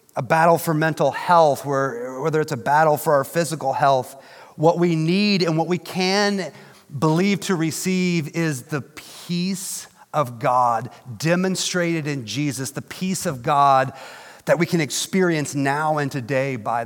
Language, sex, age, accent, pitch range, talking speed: English, male, 40-59, American, 145-190 Hz, 155 wpm